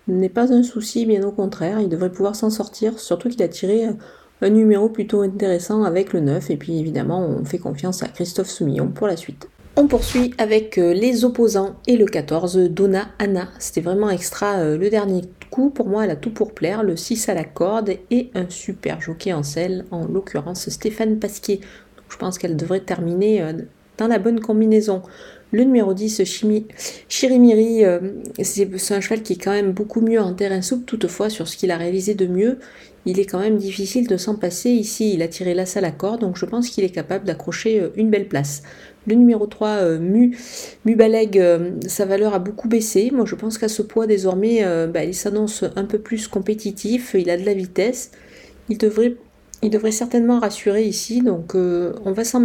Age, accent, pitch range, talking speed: 40-59, French, 185-220 Hz, 205 wpm